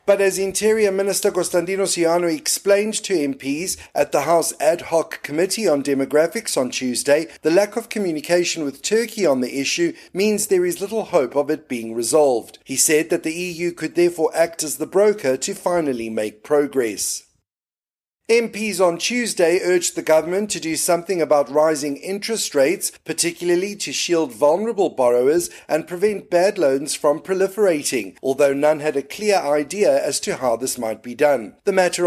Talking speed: 170 wpm